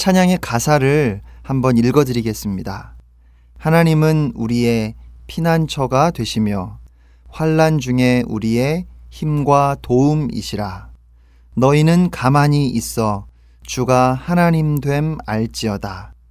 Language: Korean